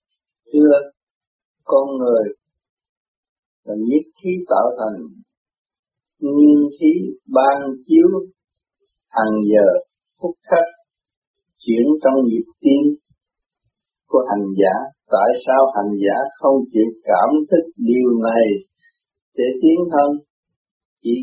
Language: Vietnamese